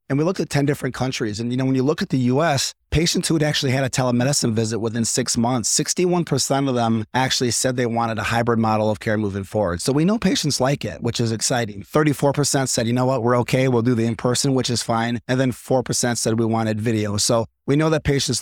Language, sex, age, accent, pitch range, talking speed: English, male, 30-49, American, 115-135 Hz, 250 wpm